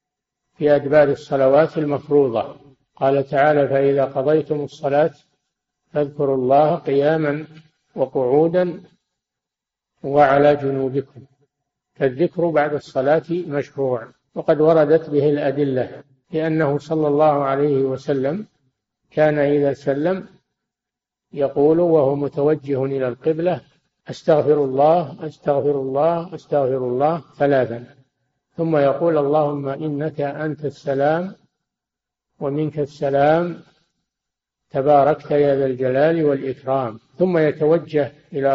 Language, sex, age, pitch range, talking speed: Arabic, male, 60-79, 140-155 Hz, 95 wpm